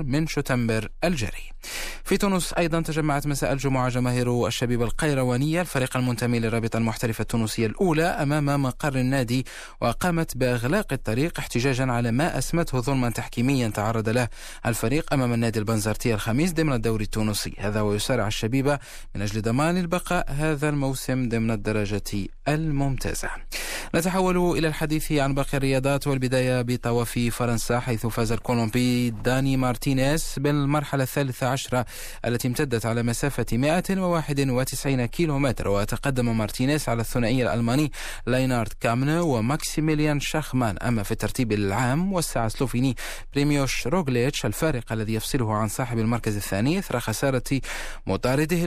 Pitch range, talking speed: 115-145 Hz, 125 wpm